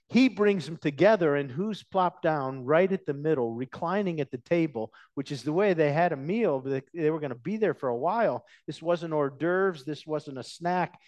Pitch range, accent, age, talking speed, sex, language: 110-160 Hz, American, 50-69, 220 wpm, male, English